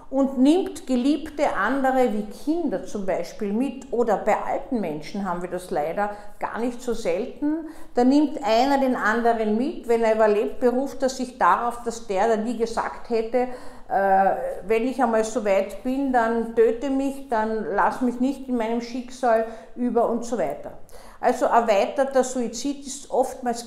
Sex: female